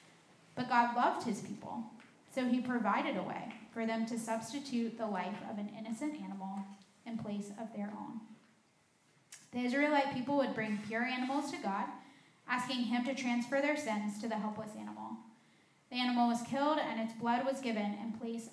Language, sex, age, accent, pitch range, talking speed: English, female, 10-29, American, 215-245 Hz, 180 wpm